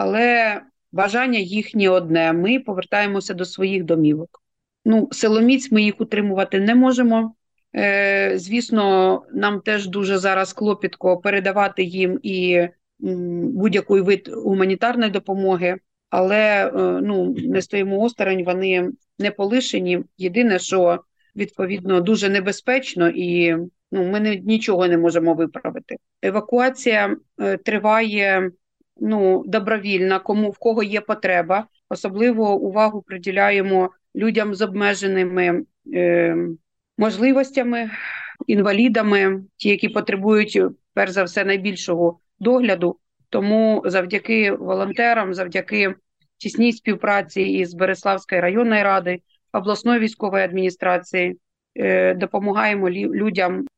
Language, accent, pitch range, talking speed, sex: Ukrainian, native, 185-220 Hz, 105 wpm, female